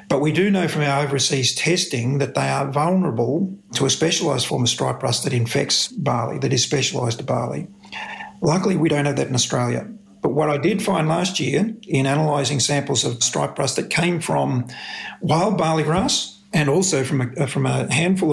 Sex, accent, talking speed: male, Australian, 195 wpm